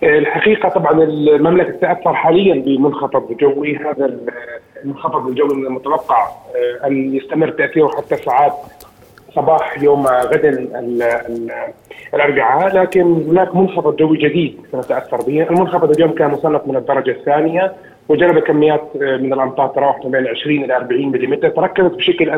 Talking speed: 125 wpm